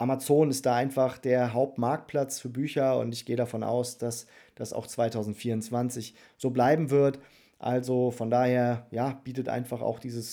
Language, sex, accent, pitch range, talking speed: German, male, German, 120-135 Hz, 155 wpm